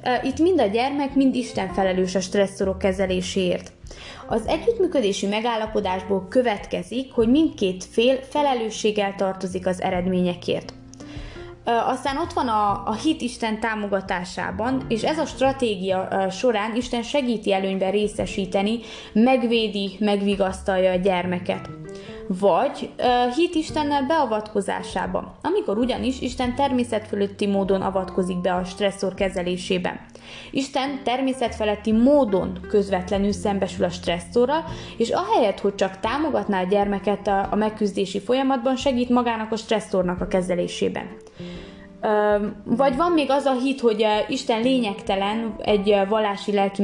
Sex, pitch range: female, 195-250 Hz